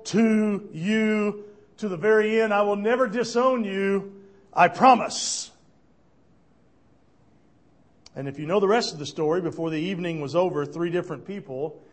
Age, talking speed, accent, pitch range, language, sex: 50-69, 150 wpm, American, 135-195 Hz, English, male